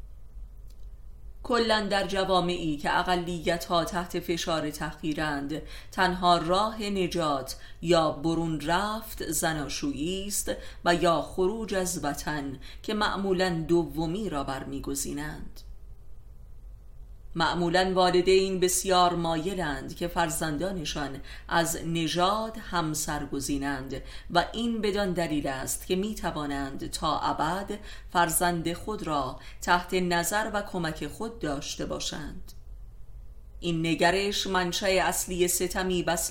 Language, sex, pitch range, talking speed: Persian, female, 155-185 Hz, 100 wpm